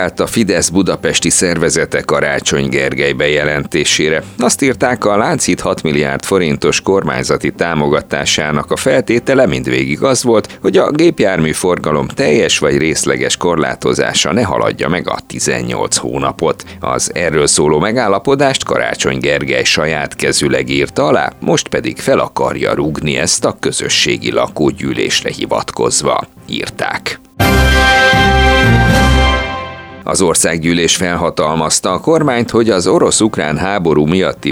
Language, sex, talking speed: Hungarian, male, 110 wpm